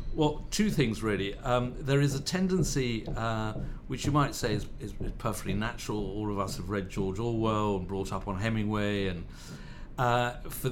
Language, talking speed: English, 190 wpm